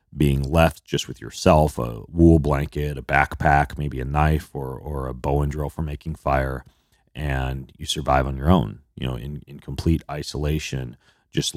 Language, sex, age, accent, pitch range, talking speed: English, male, 30-49, American, 65-75 Hz, 180 wpm